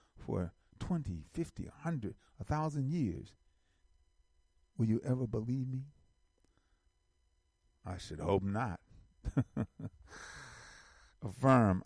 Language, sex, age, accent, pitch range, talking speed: English, male, 50-69, American, 75-105 Hz, 80 wpm